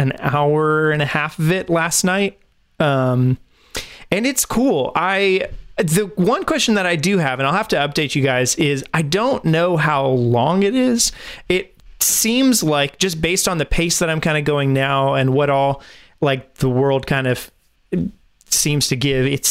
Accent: American